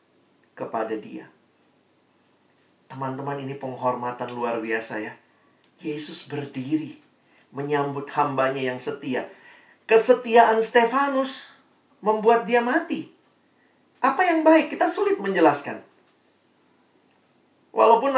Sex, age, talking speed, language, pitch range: male, 40-59, 85 wpm, Indonesian, 135-215 Hz